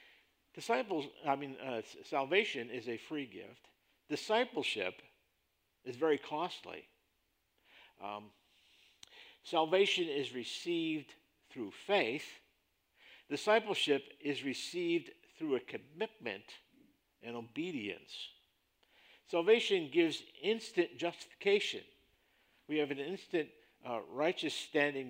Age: 50-69